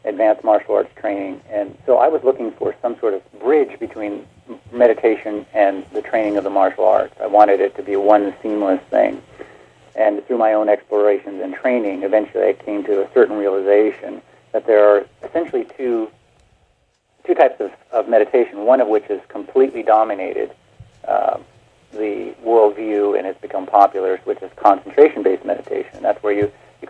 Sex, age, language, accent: male, 50-69, English, American